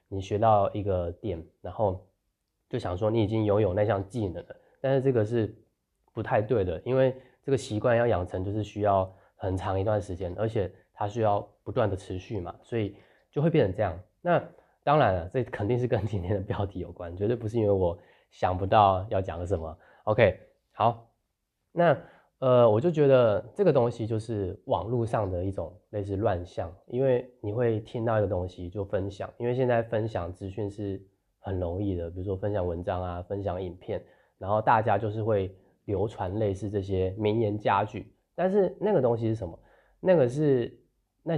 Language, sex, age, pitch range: Chinese, male, 20-39, 95-120 Hz